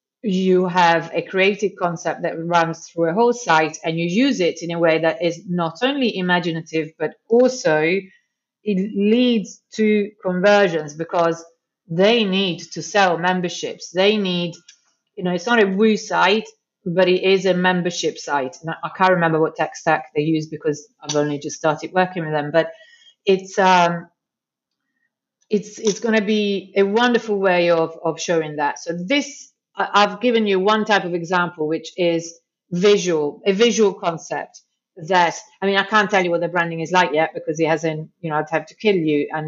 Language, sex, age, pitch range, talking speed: English, female, 30-49, 160-205 Hz, 180 wpm